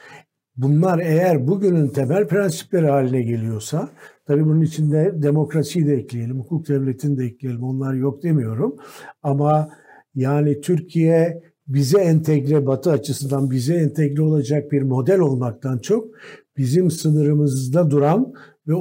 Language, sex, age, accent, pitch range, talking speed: Turkish, male, 60-79, native, 140-175 Hz, 120 wpm